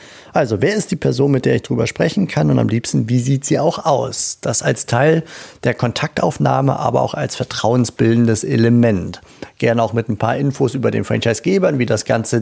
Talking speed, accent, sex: 200 wpm, German, male